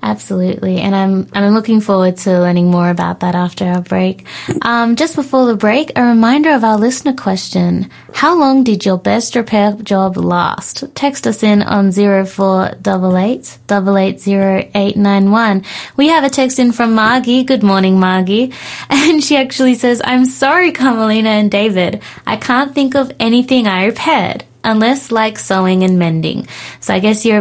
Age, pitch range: 20-39, 190-245 Hz